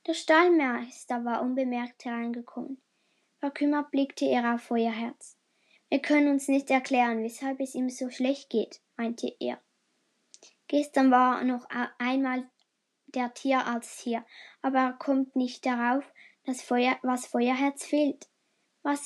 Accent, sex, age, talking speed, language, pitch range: German, female, 10-29, 130 wpm, German, 245-285 Hz